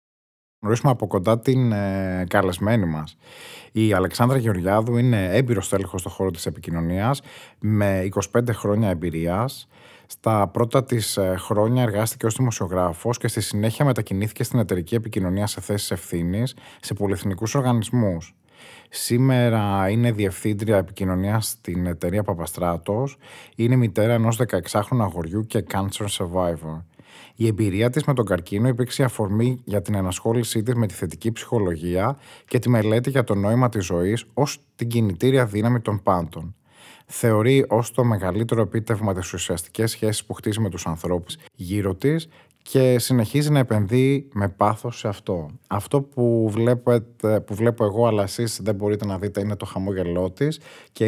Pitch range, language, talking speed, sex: 95-120 Hz, Greek, 145 wpm, male